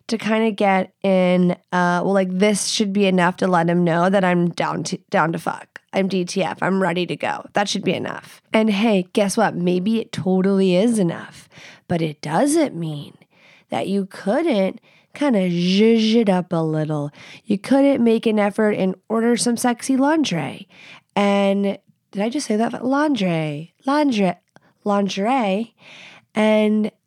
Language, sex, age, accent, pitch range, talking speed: English, female, 20-39, American, 185-230 Hz, 170 wpm